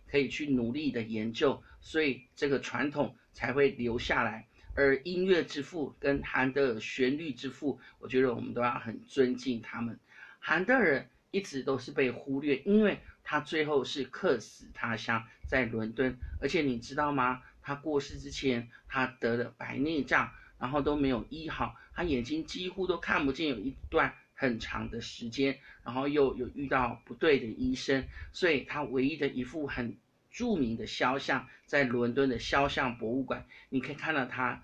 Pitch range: 120-140 Hz